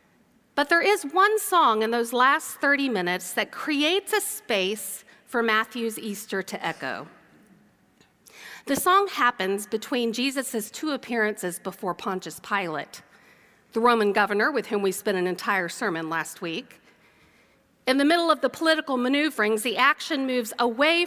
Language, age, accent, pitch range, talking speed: English, 40-59, American, 205-285 Hz, 150 wpm